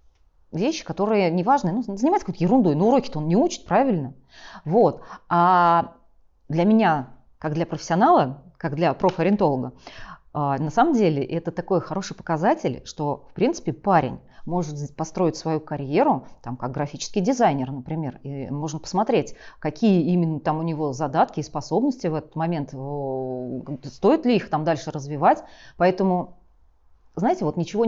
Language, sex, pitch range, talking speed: Russian, female, 155-215 Hz, 145 wpm